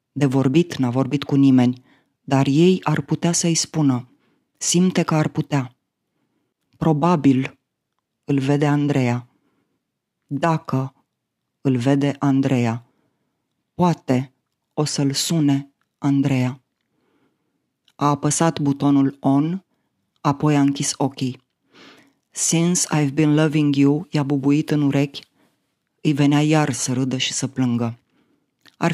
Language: Romanian